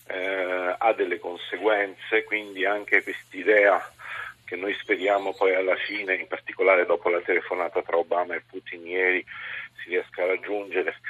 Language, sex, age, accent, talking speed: Italian, male, 40-59, native, 145 wpm